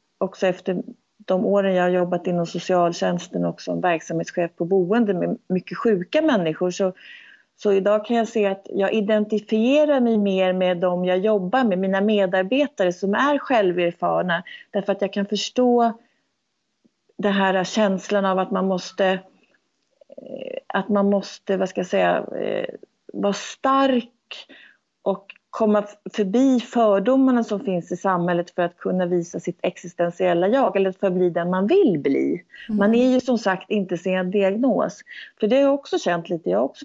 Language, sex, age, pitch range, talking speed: Swedish, female, 30-49, 185-240 Hz, 155 wpm